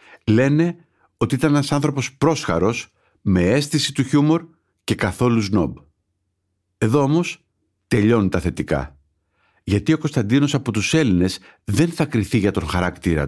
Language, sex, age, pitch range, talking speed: Greek, male, 50-69, 95-125 Hz, 135 wpm